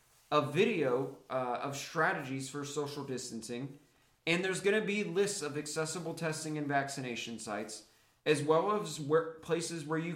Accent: American